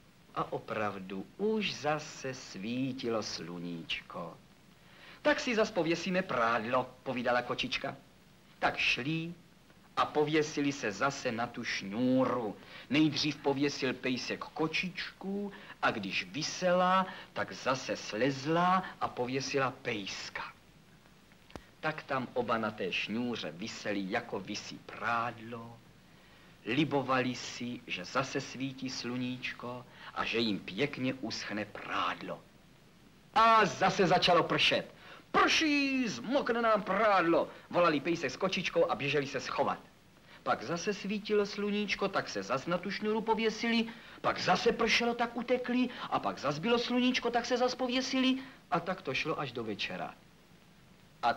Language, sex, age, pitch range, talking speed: Czech, male, 50-69, 130-210 Hz, 125 wpm